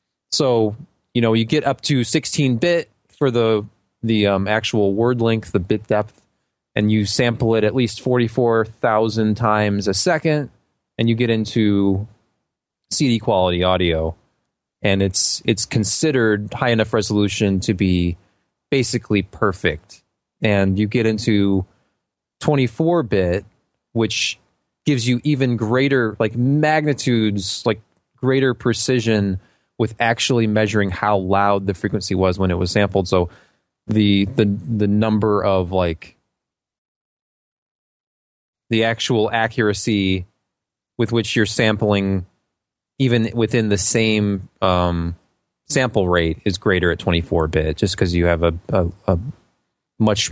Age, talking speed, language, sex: 20-39, 130 wpm, English, male